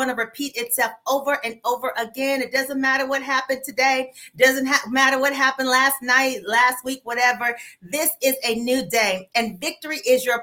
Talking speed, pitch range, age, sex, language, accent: 180 wpm, 230-270 Hz, 40-59, female, English, American